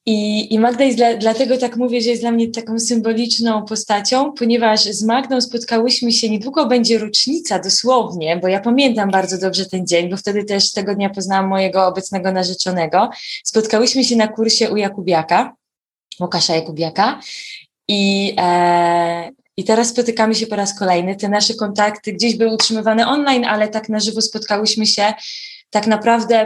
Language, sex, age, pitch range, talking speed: Polish, female, 20-39, 190-235 Hz, 155 wpm